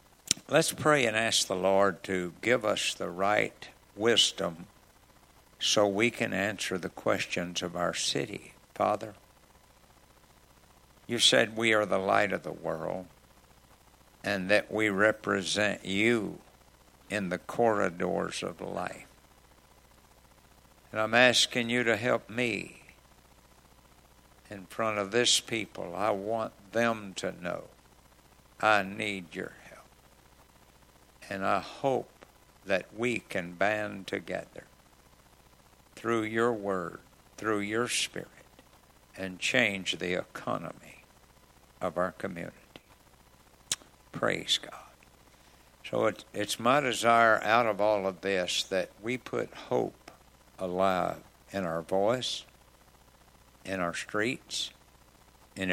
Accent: American